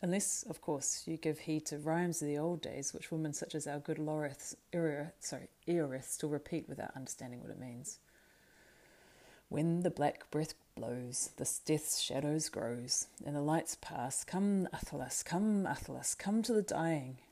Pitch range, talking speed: 140-165 Hz, 165 wpm